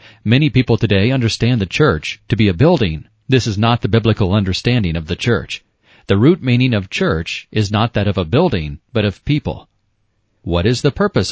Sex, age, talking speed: male, 40-59, 195 wpm